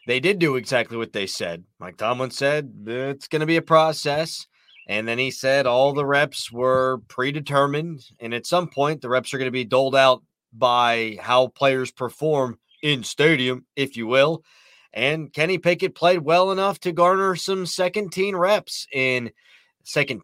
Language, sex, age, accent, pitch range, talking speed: English, male, 30-49, American, 130-170 Hz, 180 wpm